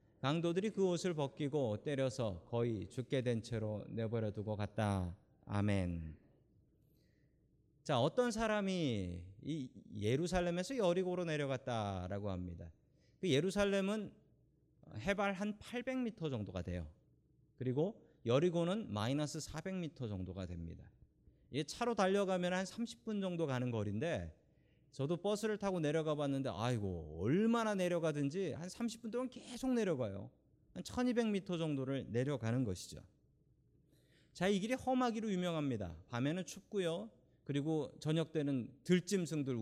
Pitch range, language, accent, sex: 110-185 Hz, Korean, native, male